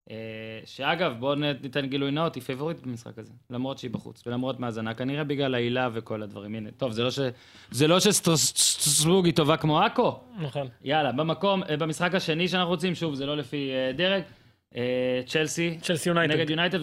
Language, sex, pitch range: Hebrew, male, 125-155 Hz